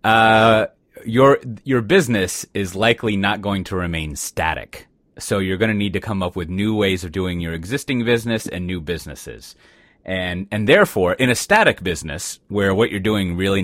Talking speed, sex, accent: 185 wpm, male, American